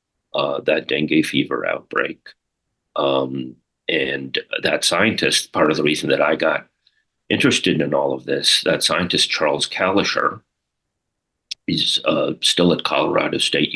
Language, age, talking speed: English, 40-59, 135 wpm